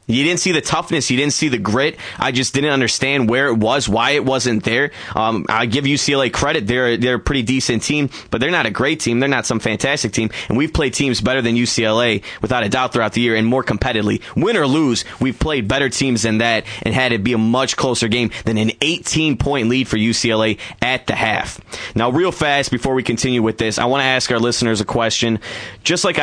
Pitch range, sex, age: 110-140 Hz, male, 20-39